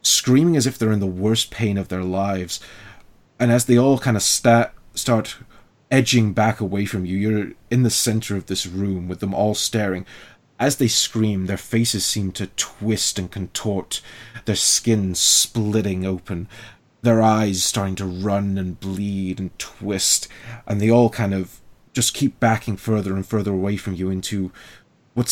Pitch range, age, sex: 95-115 Hz, 30-49, male